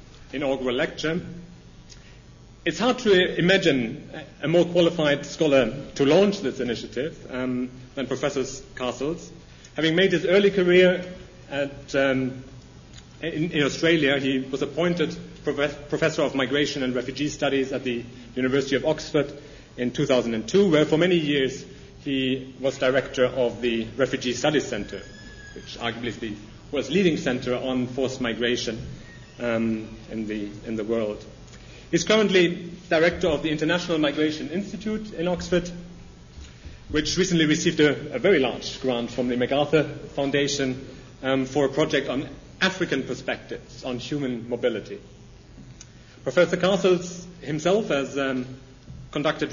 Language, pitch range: English, 125-165 Hz